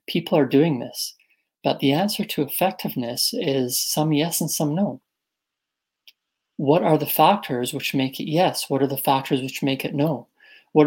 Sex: male